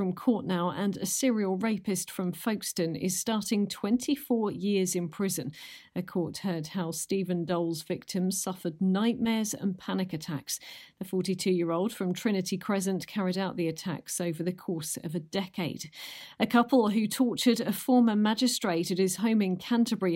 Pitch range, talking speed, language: 180-225 Hz, 160 wpm, English